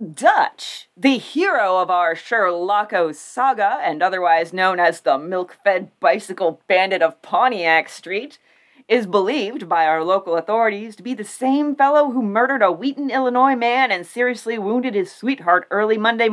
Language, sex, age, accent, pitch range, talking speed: English, female, 30-49, American, 200-300 Hz, 155 wpm